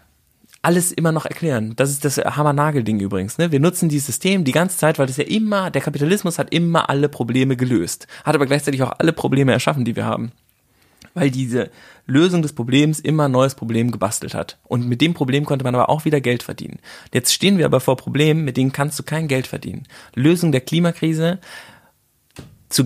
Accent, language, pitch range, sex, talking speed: German, German, 125-160 Hz, male, 200 wpm